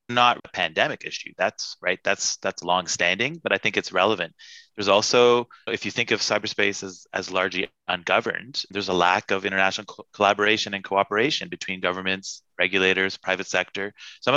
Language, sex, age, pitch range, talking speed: English, male, 30-49, 95-110 Hz, 165 wpm